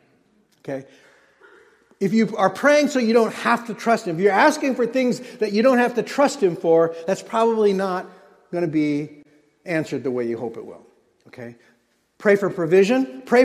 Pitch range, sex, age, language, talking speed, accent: 170-240 Hz, male, 50-69, English, 190 wpm, American